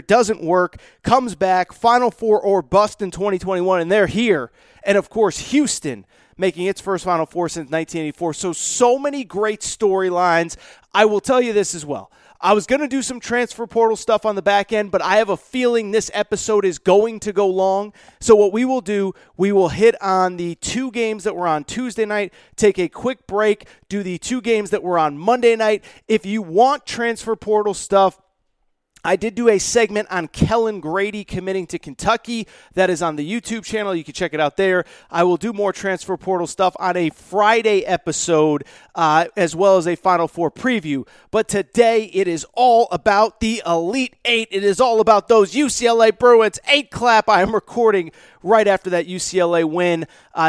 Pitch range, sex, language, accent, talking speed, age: 180-225 Hz, male, English, American, 195 wpm, 30-49